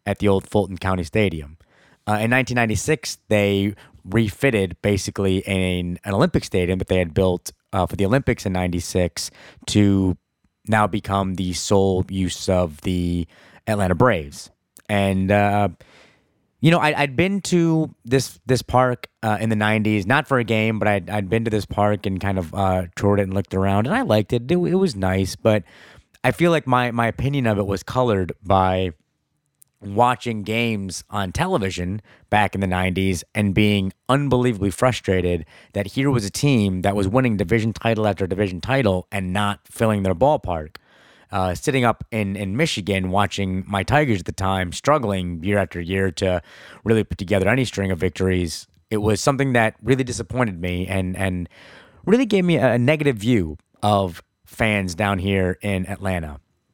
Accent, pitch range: American, 95-115 Hz